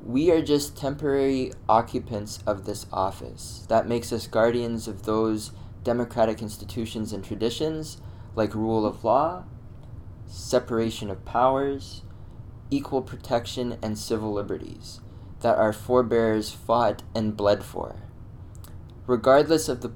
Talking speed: 120 wpm